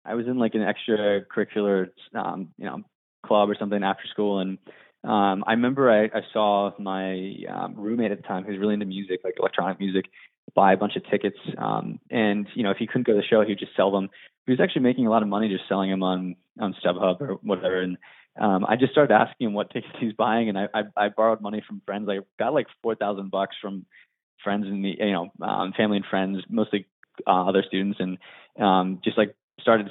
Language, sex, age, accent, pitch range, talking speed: English, male, 20-39, American, 95-110 Hz, 230 wpm